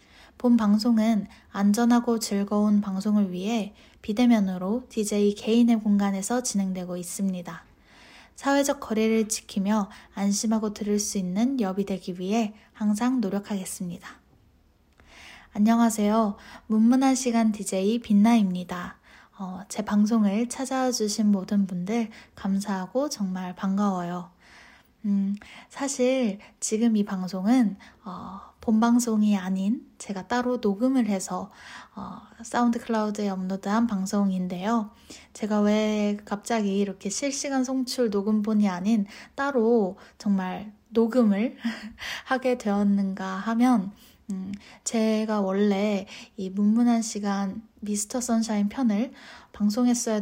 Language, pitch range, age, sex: Korean, 200-235 Hz, 10-29, female